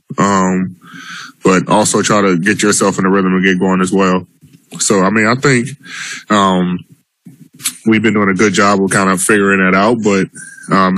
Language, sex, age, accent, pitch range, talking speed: English, male, 10-29, American, 90-100 Hz, 190 wpm